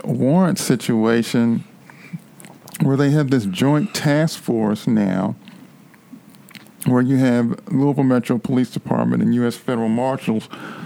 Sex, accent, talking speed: male, American, 115 wpm